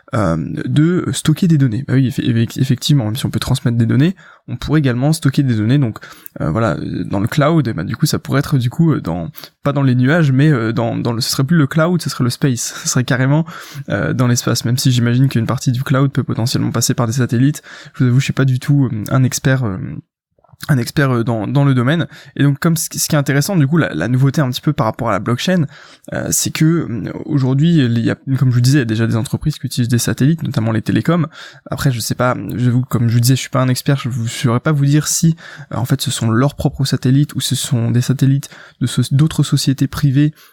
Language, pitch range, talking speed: French, 125-150 Hz, 260 wpm